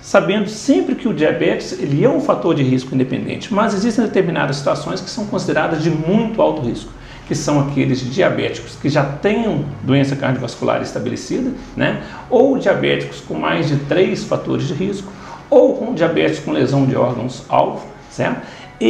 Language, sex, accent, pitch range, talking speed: Portuguese, male, Brazilian, 140-190 Hz, 165 wpm